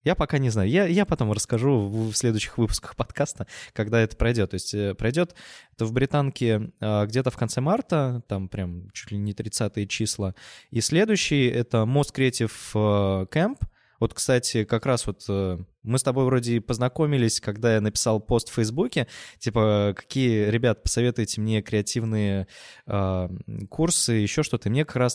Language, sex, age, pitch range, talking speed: Russian, male, 20-39, 105-125 Hz, 165 wpm